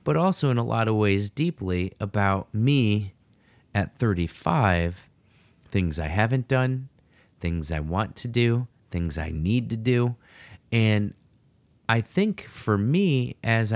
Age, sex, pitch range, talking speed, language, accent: 30-49, male, 95-125 Hz, 140 wpm, English, American